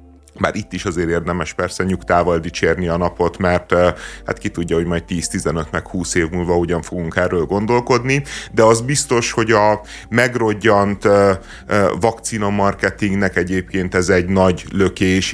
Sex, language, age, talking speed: male, Hungarian, 30-49, 140 wpm